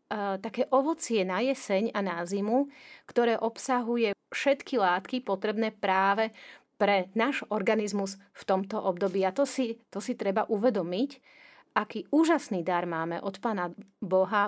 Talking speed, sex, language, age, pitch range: 135 wpm, female, Slovak, 30-49, 185-250 Hz